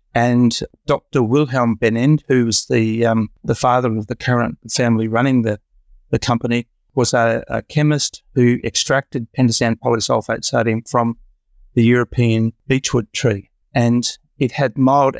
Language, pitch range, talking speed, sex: English, 115-130 Hz, 140 wpm, male